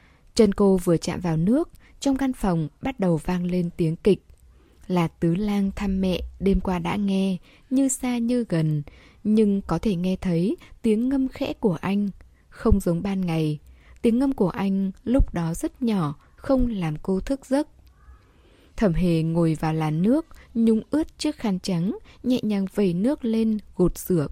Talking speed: 180 wpm